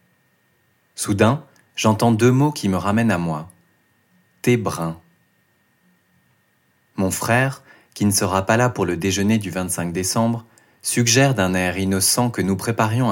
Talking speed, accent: 135 wpm, French